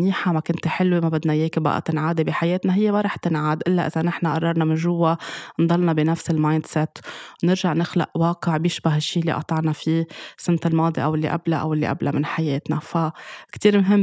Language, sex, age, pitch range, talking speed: Arabic, female, 20-39, 155-175 Hz, 190 wpm